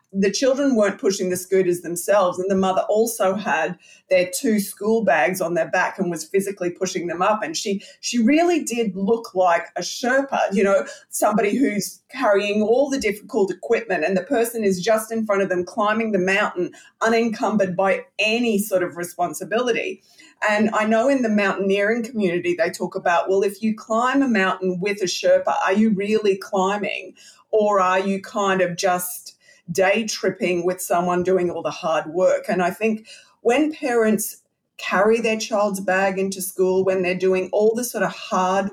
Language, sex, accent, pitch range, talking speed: English, female, Australian, 185-225 Hz, 185 wpm